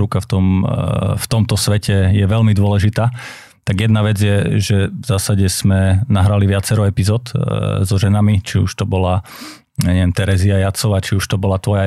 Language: Slovak